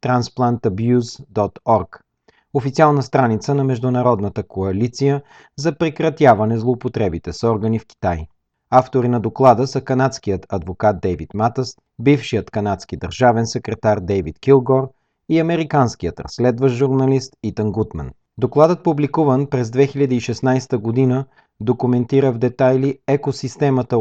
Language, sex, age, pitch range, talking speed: Bulgarian, male, 40-59, 110-140 Hz, 105 wpm